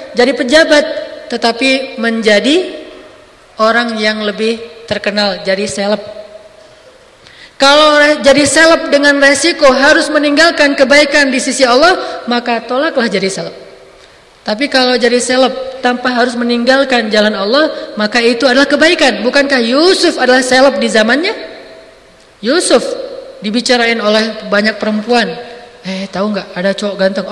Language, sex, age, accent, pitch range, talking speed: Indonesian, female, 20-39, native, 215-270 Hz, 125 wpm